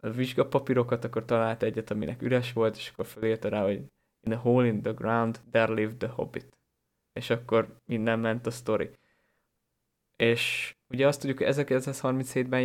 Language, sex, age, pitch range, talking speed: Hungarian, male, 20-39, 110-120 Hz, 175 wpm